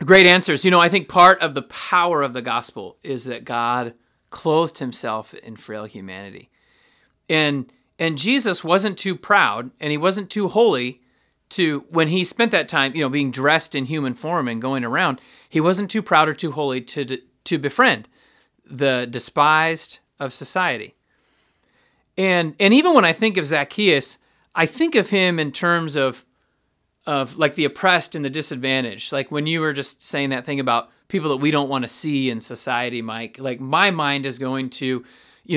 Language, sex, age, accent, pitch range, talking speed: English, male, 40-59, American, 130-165 Hz, 185 wpm